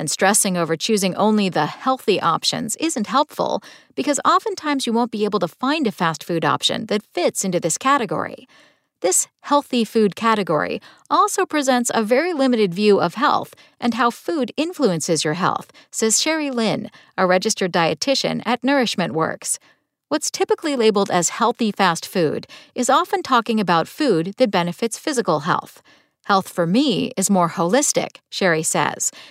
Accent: American